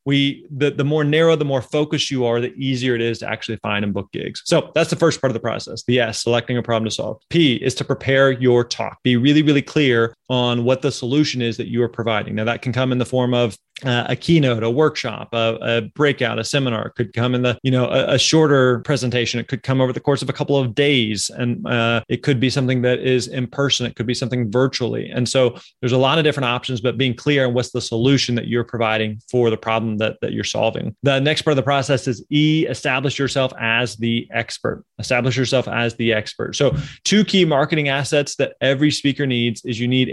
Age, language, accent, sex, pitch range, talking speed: 30-49, English, American, male, 120-140 Hz, 245 wpm